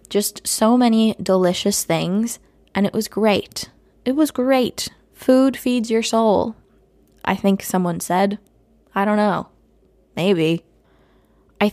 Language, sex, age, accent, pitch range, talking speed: English, female, 10-29, American, 180-225 Hz, 130 wpm